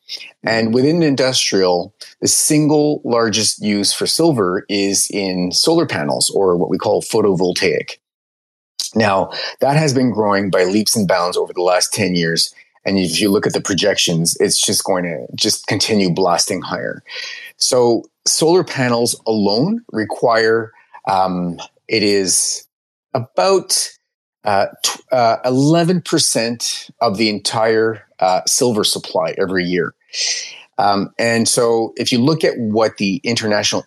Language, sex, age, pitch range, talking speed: English, male, 30-49, 100-155 Hz, 135 wpm